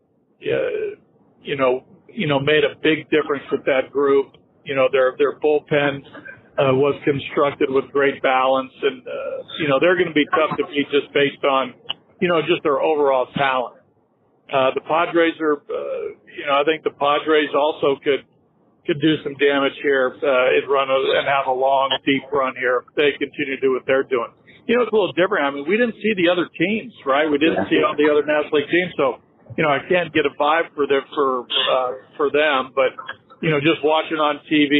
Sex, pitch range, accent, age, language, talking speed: male, 135-160 Hz, American, 50-69, English, 215 wpm